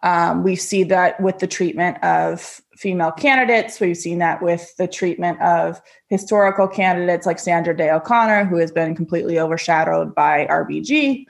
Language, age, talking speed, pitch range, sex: English, 20-39, 160 wpm, 165-195 Hz, female